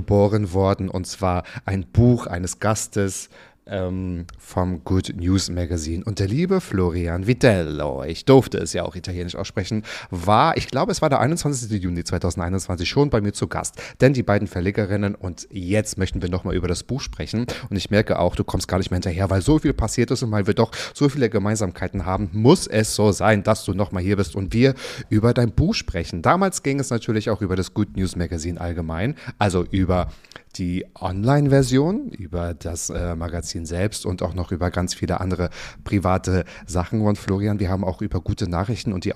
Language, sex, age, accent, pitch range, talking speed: German, male, 30-49, German, 90-115 Hz, 195 wpm